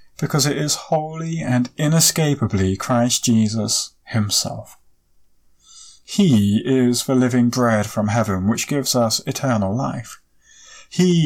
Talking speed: 115 wpm